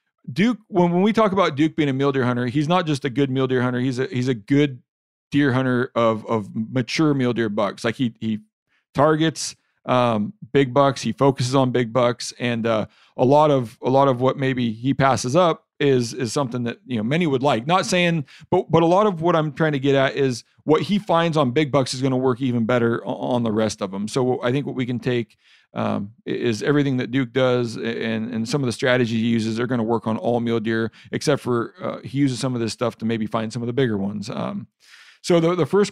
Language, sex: English, male